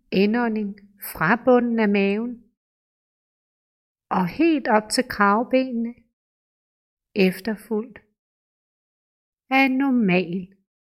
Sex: female